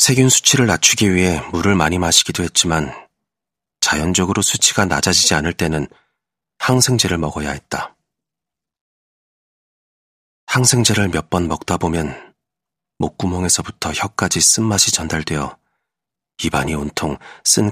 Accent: native